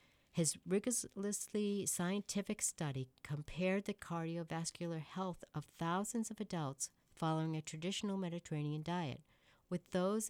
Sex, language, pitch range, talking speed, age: female, English, 145-185 Hz, 110 wpm, 60-79